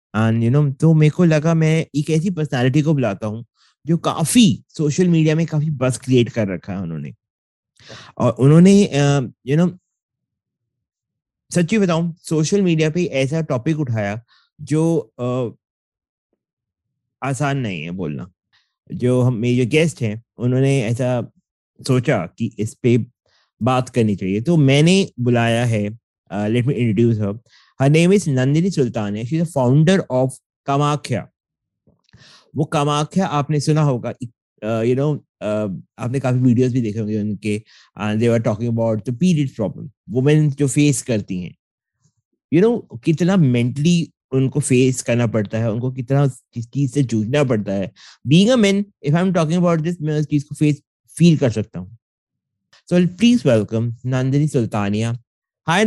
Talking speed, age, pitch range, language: 125 wpm, 30-49, 115-155 Hz, English